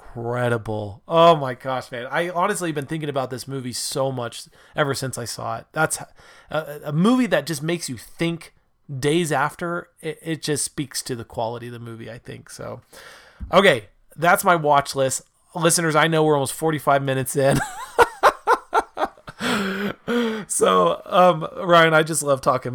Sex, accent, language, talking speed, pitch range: male, American, English, 165 wpm, 130-165 Hz